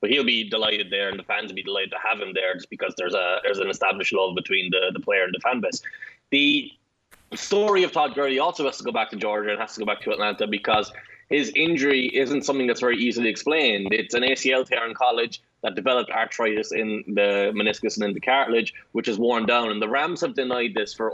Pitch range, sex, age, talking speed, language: 115-150 Hz, male, 20-39, 245 wpm, English